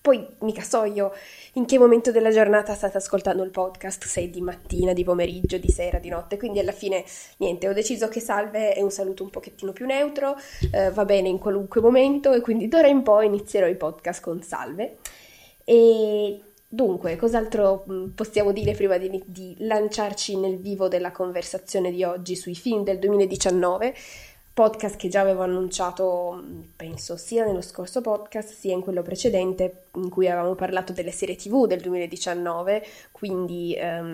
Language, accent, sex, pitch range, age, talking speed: Italian, native, female, 180-210 Hz, 20-39, 170 wpm